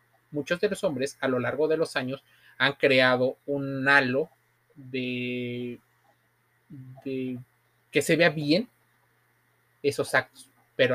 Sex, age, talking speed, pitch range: male, 30-49, 125 wpm, 120-155 Hz